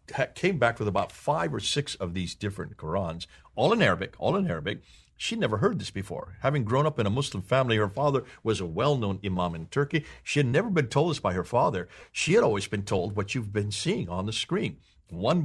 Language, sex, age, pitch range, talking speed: English, male, 50-69, 90-135 Hz, 235 wpm